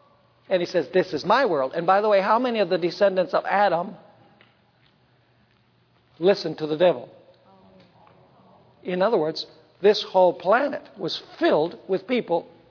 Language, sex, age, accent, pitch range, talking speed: English, male, 60-79, American, 180-285 Hz, 150 wpm